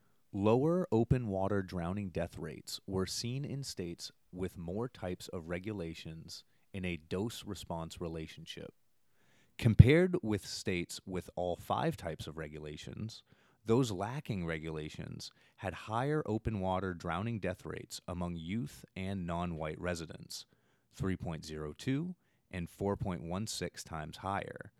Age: 30-49